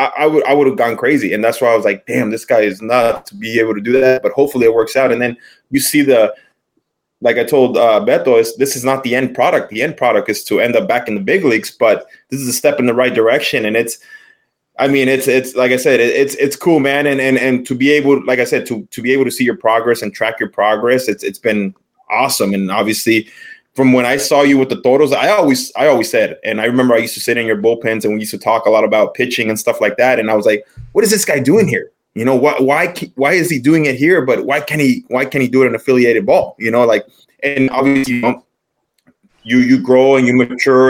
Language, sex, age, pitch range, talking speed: English, male, 20-39, 115-140 Hz, 275 wpm